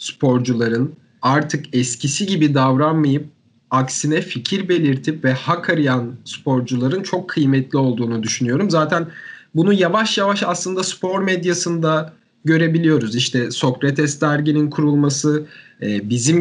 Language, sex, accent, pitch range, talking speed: Turkish, male, native, 135-180 Hz, 105 wpm